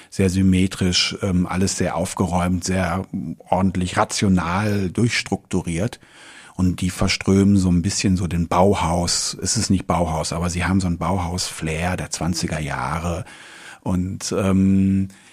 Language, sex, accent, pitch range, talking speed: German, male, German, 90-105 Hz, 130 wpm